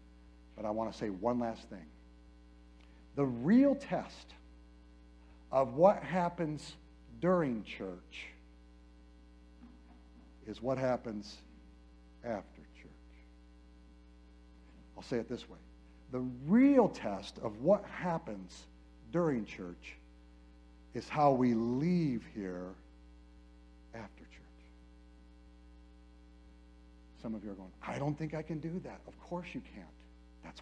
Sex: male